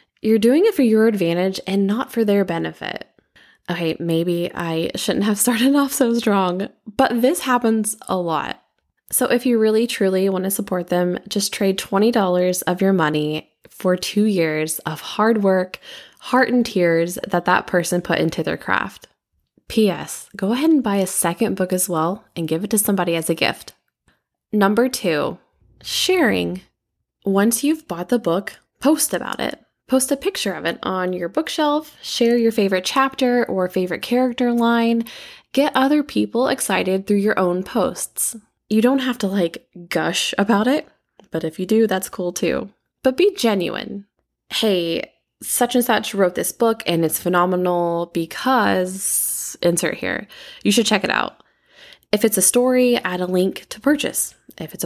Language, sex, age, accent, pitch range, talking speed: English, female, 20-39, American, 180-240 Hz, 170 wpm